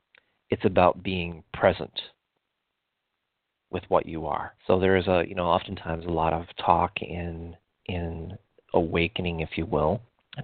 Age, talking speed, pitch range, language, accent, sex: 40-59, 150 wpm, 85-100 Hz, English, American, male